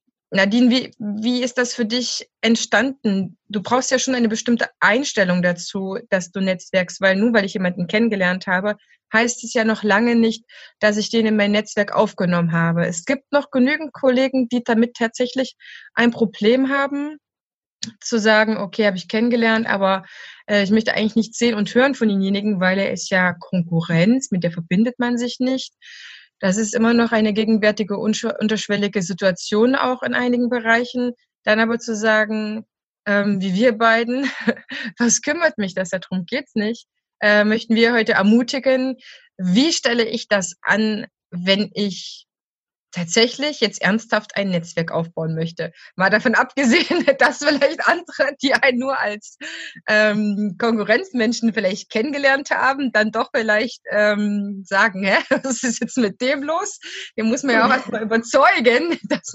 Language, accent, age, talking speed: German, German, 20-39, 160 wpm